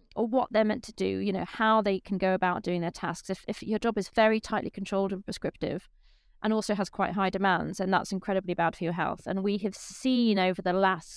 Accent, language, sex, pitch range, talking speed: British, English, female, 185-215 Hz, 245 wpm